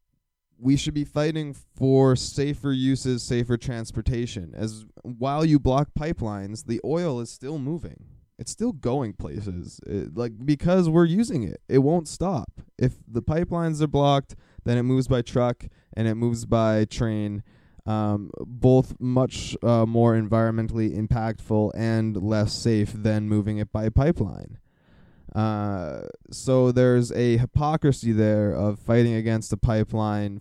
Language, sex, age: English, male, 20-39